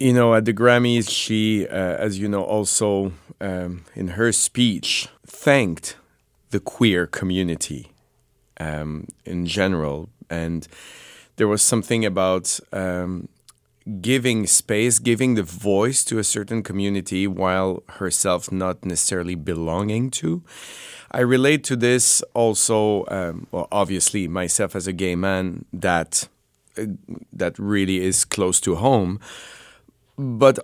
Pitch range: 95-115 Hz